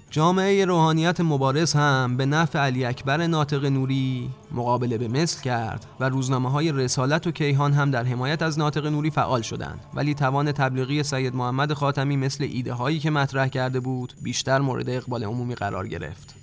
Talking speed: 170 wpm